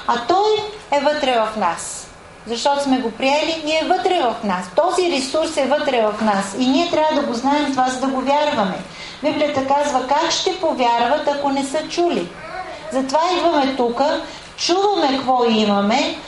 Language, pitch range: English, 250-310 Hz